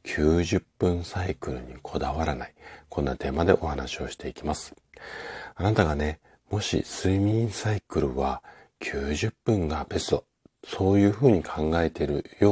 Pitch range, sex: 75-95 Hz, male